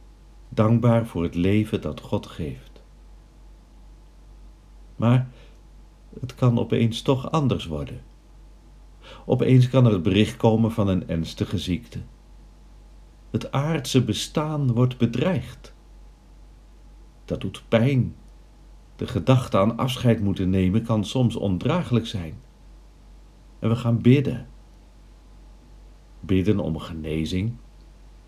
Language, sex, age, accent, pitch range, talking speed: Dutch, male, 50-69, Dutch, 95-125 Hz, 105 wpm